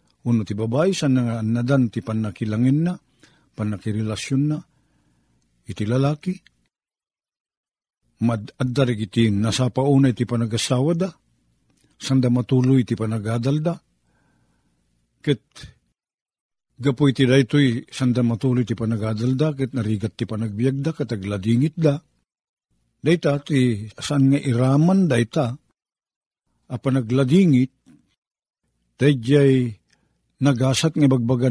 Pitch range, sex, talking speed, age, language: 115-155 Hz, male, 85 wpm, 50-69, Filipino